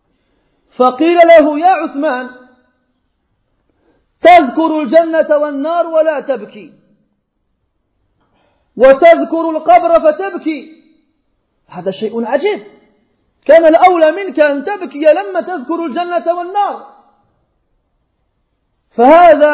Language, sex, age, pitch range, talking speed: French, male, 40-59, 265-325 Hz, 75 wpm